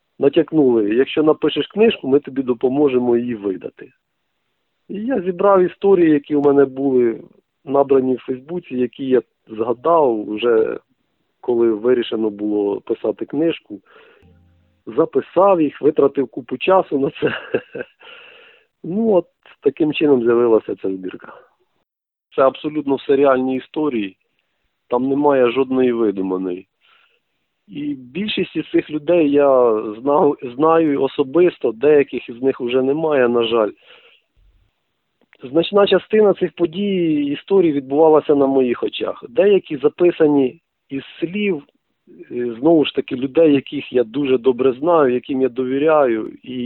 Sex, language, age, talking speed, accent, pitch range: male, Ukrainian, 40-59, 120 wpm, native, 125-170 Hz